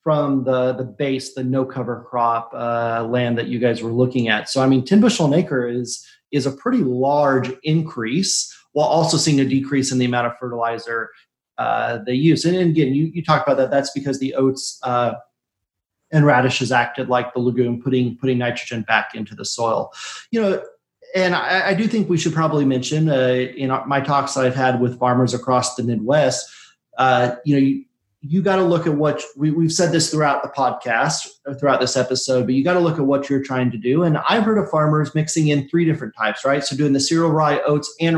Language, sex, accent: English, male, American